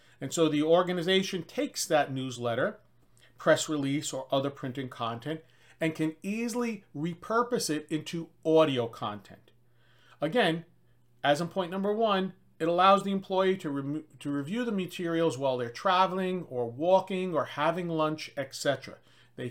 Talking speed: 140 wpm